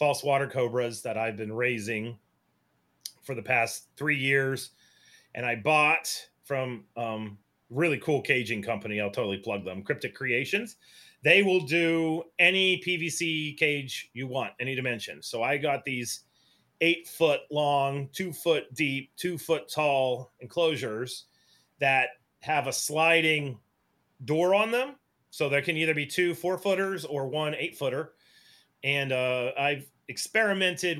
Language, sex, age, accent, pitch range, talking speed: English, male, 30-49, American, 125-160 Hz, 145 wpm